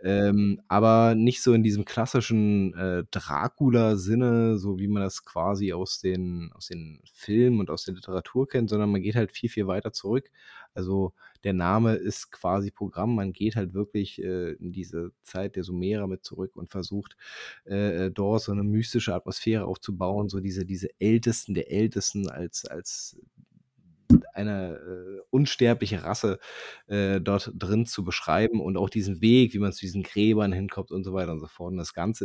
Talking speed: 175 wpm